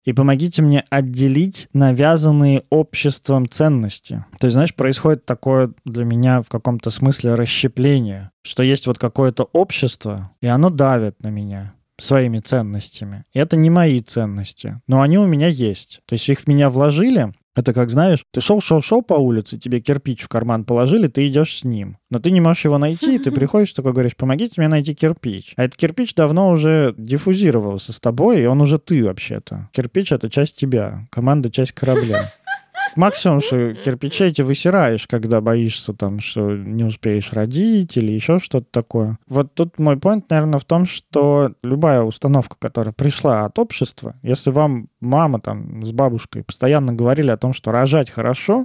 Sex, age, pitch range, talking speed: male, 20-39, 115-155 Hz, 175 wpm